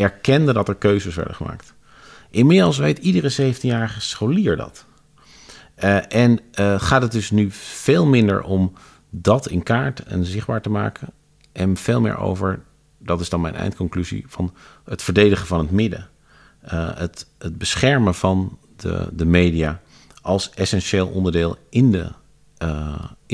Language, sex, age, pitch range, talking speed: Dutch, male, 40-59, 85-110 Hz, 150 wpm